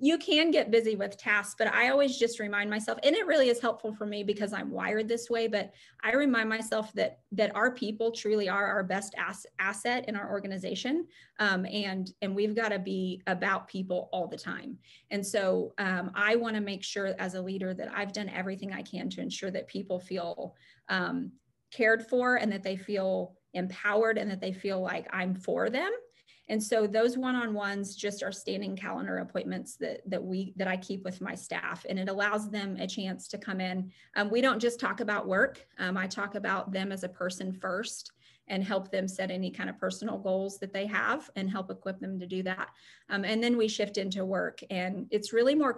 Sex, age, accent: female, 30-49, American